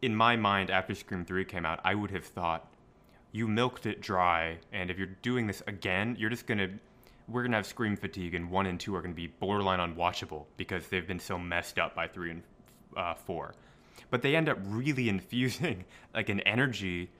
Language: English